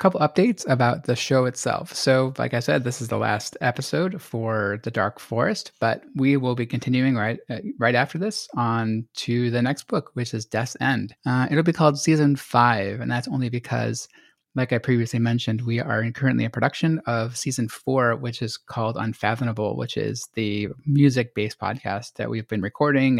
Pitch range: 115-140 Hz